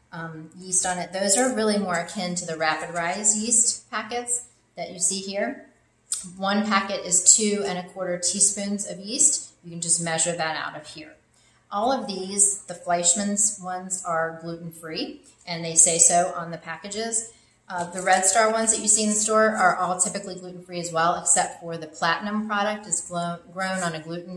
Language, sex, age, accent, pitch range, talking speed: English, female, 30-49, American, 160-190 Hz, 195 wpm